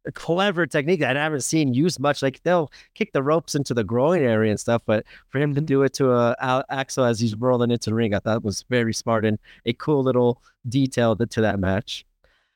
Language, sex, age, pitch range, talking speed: English, male, 30-49, 125-155 Hz, 240 wpm